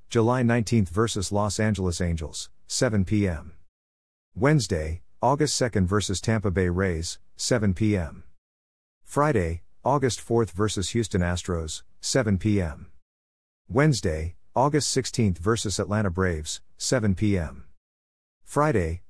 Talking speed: 120 wpm